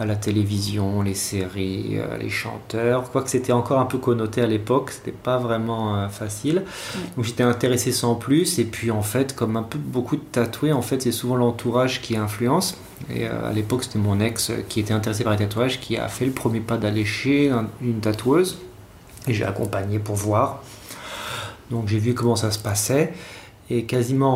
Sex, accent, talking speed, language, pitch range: male, French, 185 wpm, French, 110-130 Hz